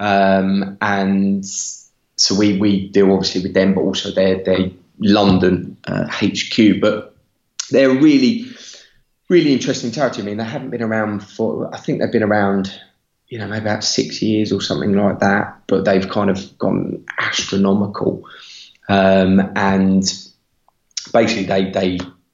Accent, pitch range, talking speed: British, 95-110 Hz, 150 wpm